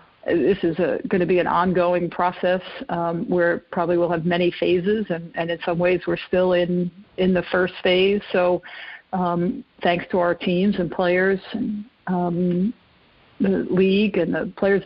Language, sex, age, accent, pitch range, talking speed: English, female, 50-69, American, 175-195 Hz, 175 wpm